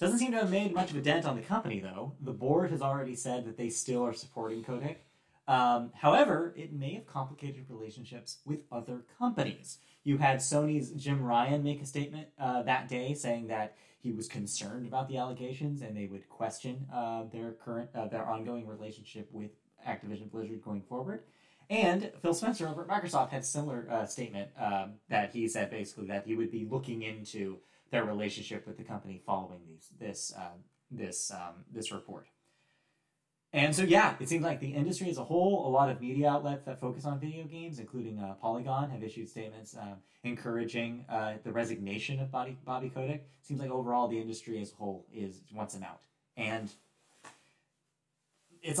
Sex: male